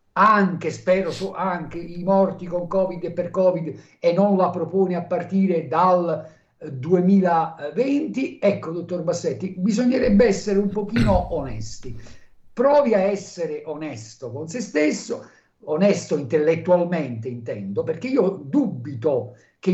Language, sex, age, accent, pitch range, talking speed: Italian, male, 50-69, native, 155-210 Hz, 120 wpm